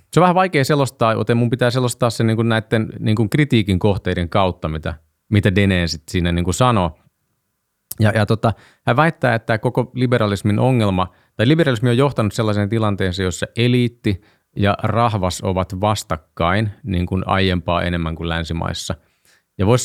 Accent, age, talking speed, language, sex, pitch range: native, 30-49, 150 wpm, Finnish, male, 90-120 Hz